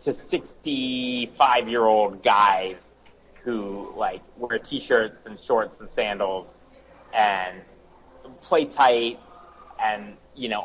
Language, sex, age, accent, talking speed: English, male, 30-49, American, 95 wpm